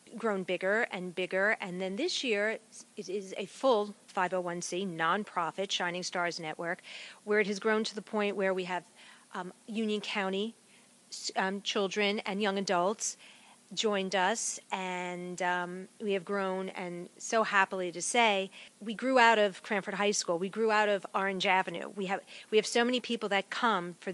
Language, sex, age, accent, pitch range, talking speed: English, female, 40-59, American, 185-225 Hz, 175 wpm